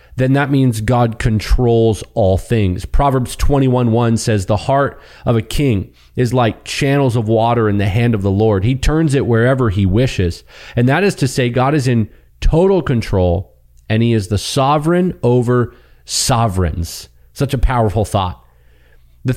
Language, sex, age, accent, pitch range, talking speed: English, male, 30-49, American, 100-130 Hz, 165 wpm